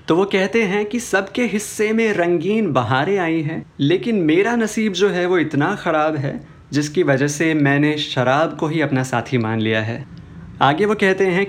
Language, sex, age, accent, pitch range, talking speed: Hindi, male, 30-49, native, 135-190 Hz, 195 wpm